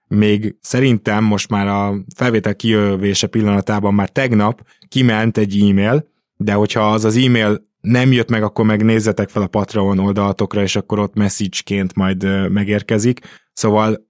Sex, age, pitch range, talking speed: male, 20-39, 100-115 Hz, 145 wpm